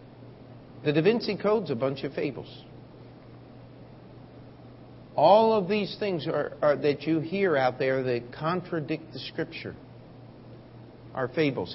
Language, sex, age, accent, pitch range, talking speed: English, male, 50-69, American, 125-175 Hz, 130 wpm